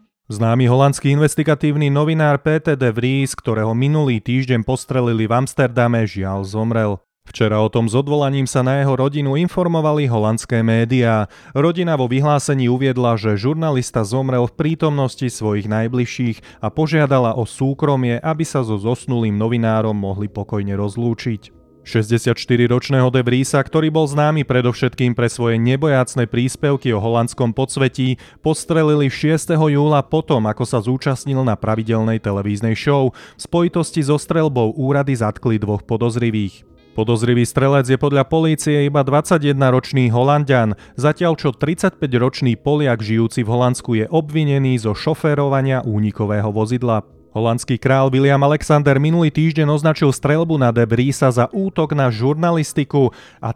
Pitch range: 115-145 Hz